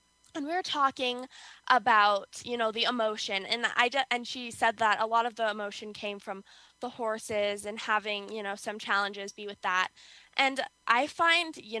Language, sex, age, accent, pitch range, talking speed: English, female, 10-29, American, 200-235 Hz, 190 wpm